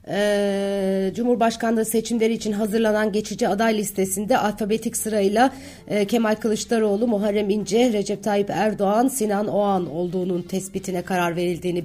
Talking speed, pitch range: 120 wpm, 195-225 Hz